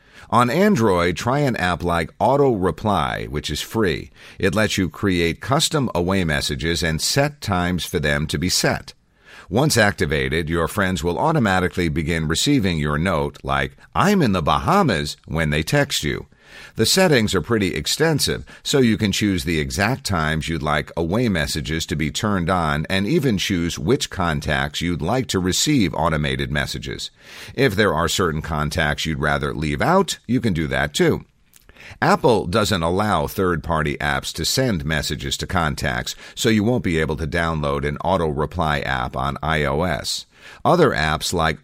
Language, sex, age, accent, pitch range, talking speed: English, male, 50-69, American, 75-95 Hz, 165 wpm